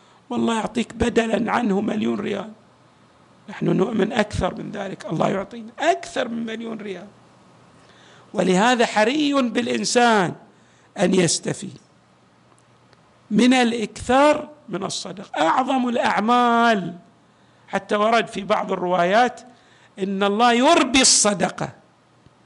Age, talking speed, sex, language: 50-69, 100 wpm, male, Arabic